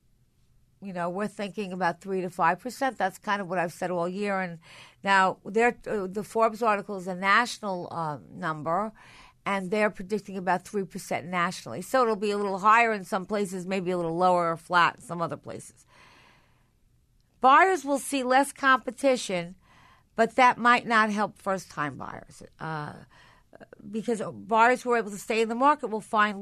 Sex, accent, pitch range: female, American, 190-255 Hz